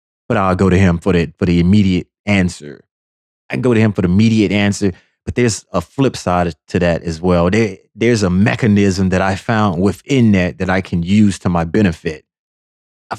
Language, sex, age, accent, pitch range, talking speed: English, male, 30-49, American, 90-110 Hz, 210 wpm